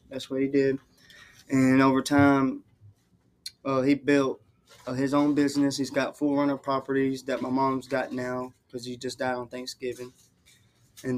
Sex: male